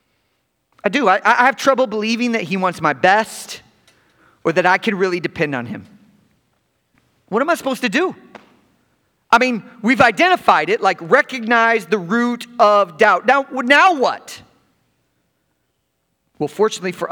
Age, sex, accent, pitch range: 40-59, male, American, 160-240 Hz